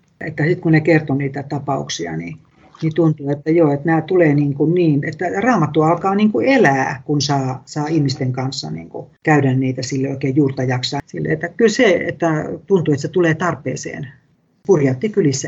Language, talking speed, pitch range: Finnish, 185 wpm, 135-170 Hz